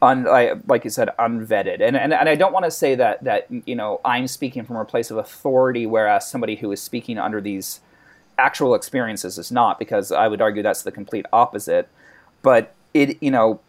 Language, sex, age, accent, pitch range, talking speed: English, male, 30-49, American, 105-175 Hz, 210 wpm